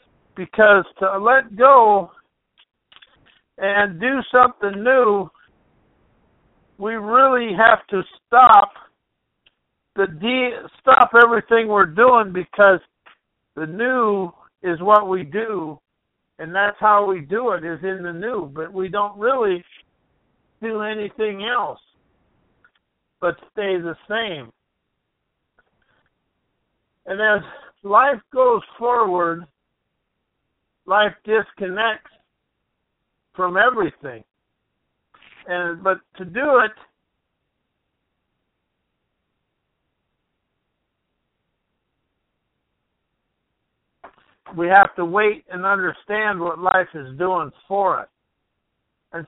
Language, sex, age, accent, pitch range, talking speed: English, male, 60-79, American, 180-225 Hz, 90 wpm